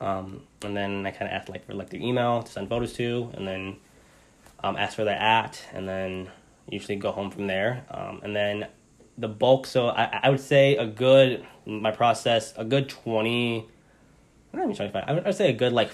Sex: male